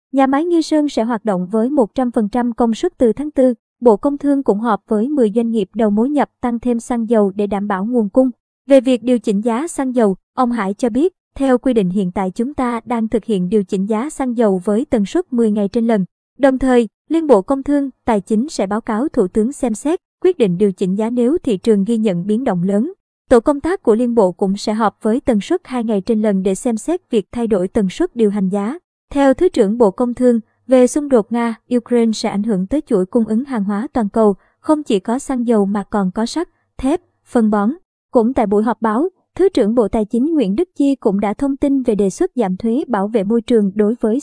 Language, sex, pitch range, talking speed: Vietnamese, male, 215-265 Hz, 250 wpm